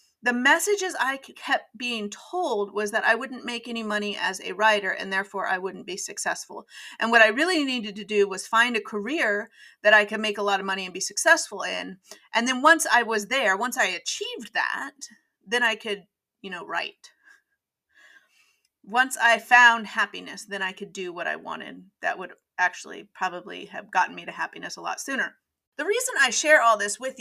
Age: 30-49